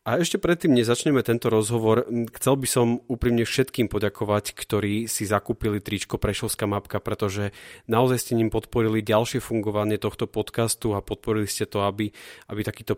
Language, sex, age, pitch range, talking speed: Slovak, male, 30-49, 105-120 Hz, 155 wpm